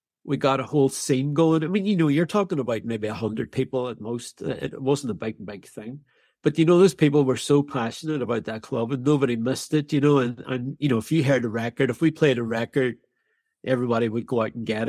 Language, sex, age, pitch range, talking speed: English, male, 60-79, 120-160 Hz, 245 wpm